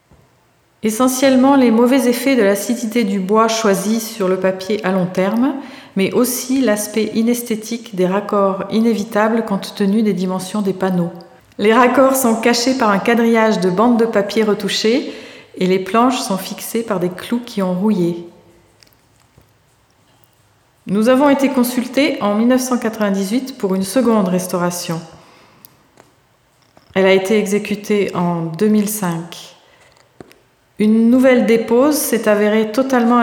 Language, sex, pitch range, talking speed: French, female, 190-235 Hz, 130 wpm